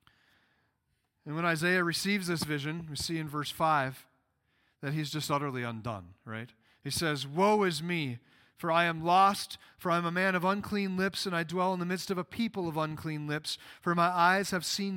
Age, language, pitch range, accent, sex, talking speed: 40-59, English, 135-195 Hz, American, male, 200 wpm